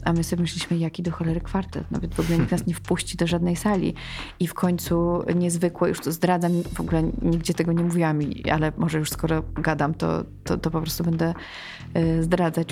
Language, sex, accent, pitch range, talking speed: Polish, female, native, 165-185 Hz, 205 wpm